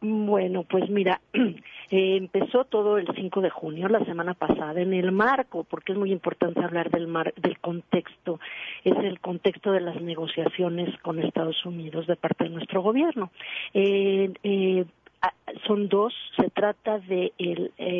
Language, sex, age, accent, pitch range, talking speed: Spanish, female, 40-59, Mexican, 175-200 Hz, 160 wpm